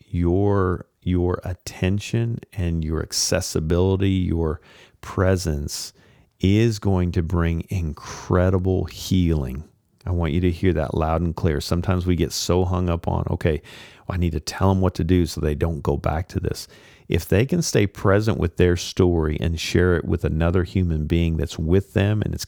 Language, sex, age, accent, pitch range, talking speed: English, male, 40-59, American, 85-95 Hz, 180 wpm